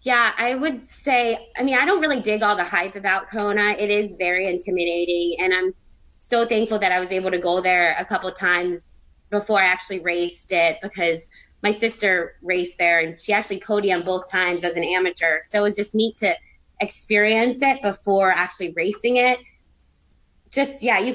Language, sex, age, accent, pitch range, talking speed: English, female, 20-39, American, 175-215 Hz, 195 wpm